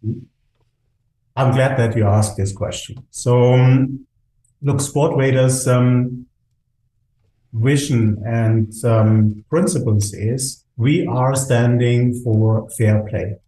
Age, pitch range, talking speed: 50-69, 115-135 Hz, 100 wpm